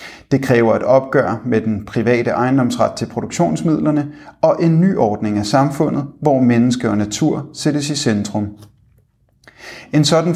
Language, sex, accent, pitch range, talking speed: Danish, male, native, 115-145 Hz, 145 wpm